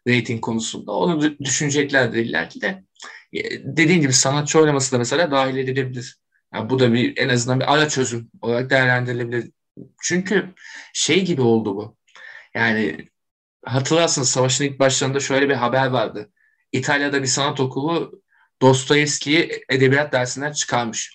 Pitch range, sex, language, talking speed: 125-165 Hz, male, Turkish, 140 wpm